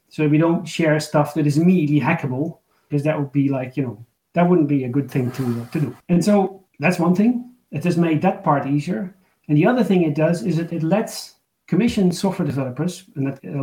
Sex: male